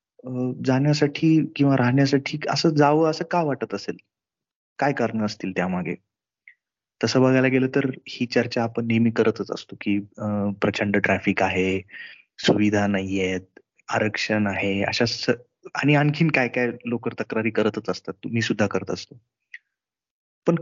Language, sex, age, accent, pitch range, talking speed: Marathi, male, 30-49, native, 105-135 Hz, 135 wpm